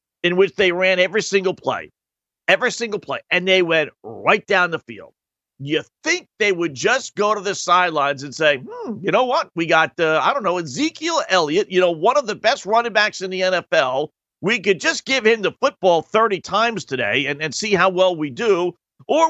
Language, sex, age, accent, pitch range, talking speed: English, male, 50-69, American, 170-225 Hz, 210 wpm